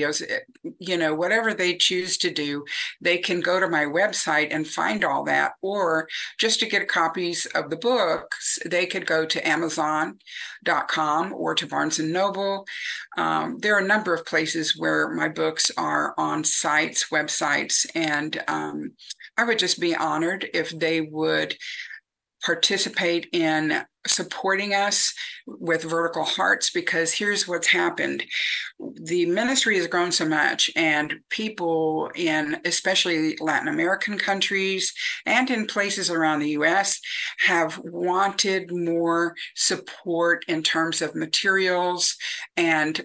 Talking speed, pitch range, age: 135 wpm, 160-200 Hz, 50-69